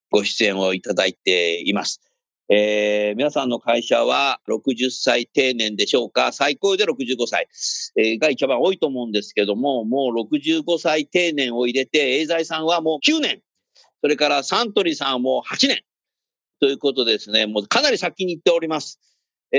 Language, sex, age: Japanese, male, 50-69